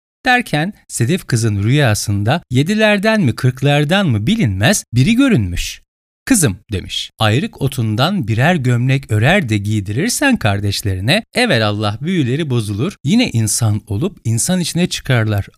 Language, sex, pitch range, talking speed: Turkish, male, 110-180 Hz, 115 wpm